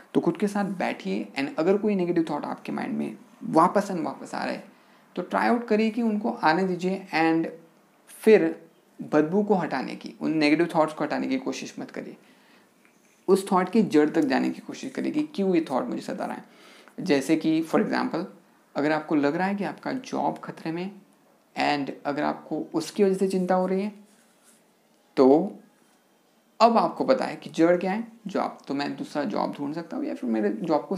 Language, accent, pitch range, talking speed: Hindi, native, 155-215 Hz, 205 wpm